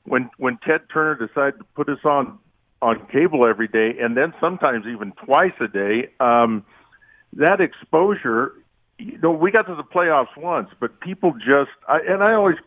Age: 50-69